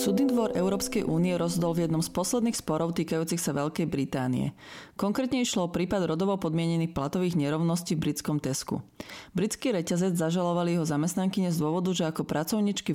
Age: 30-49